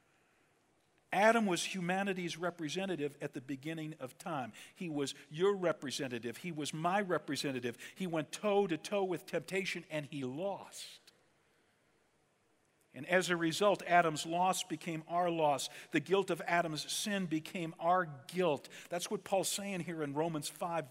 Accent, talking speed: American, 145 wpm